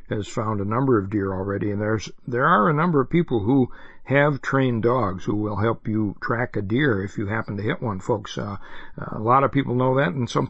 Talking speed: 240 wpm